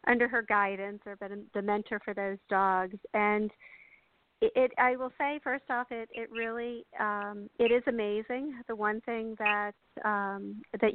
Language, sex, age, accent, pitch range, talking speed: English, female, 50-69, American, 185-215 Hz, 155 wpm